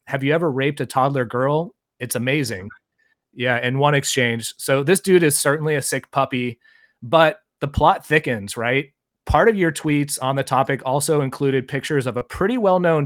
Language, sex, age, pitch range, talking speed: English, male, 30-49, 130-155 Hz, 185 wpm